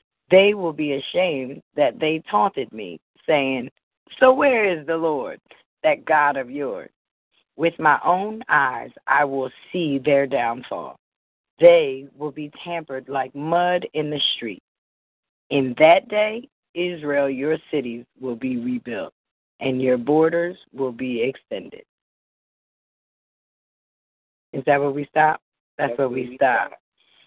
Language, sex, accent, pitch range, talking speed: English, female, American, 135-165 Hz, 130 wpm